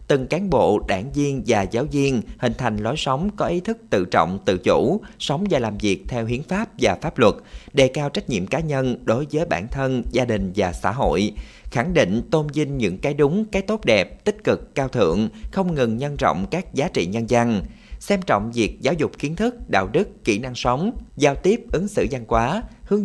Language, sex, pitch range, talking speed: Vietnamese, male, 115-165 Hz, 225 wpm